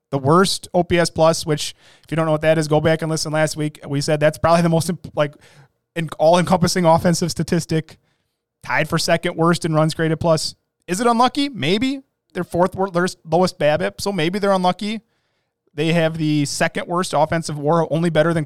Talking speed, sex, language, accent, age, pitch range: 195 wpm, male, English, American, 20-39, 150-190 Hz